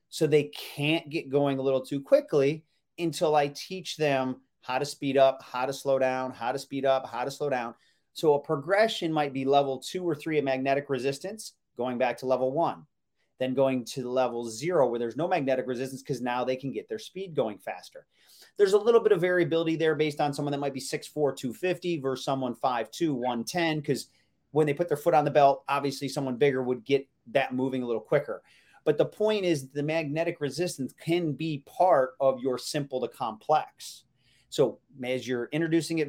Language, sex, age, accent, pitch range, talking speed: English, male, 30-49, American, 130-160 Hz, 215 wpm